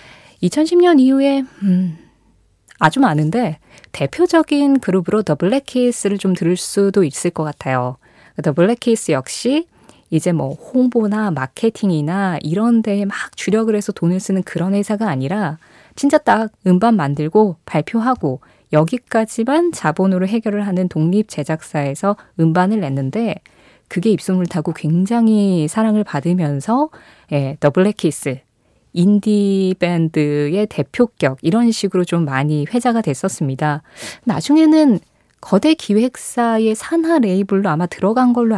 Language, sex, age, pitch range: Korean, female, 20-39, 155-225 Hz